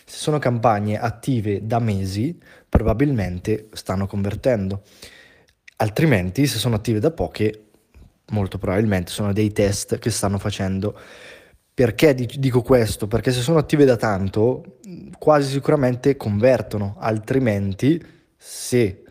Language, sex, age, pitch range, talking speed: Italian, male, 20-39, 105-130 Hz, 115 wpm